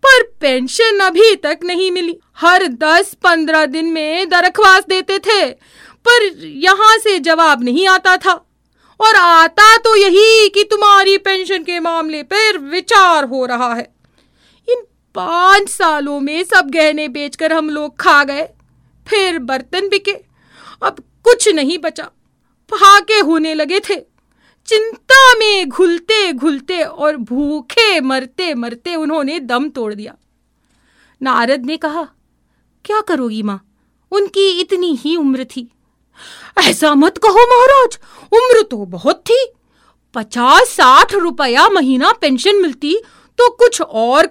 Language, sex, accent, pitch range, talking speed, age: Hindi, female, native, 305-405 Hz, 130 wpm, 30-49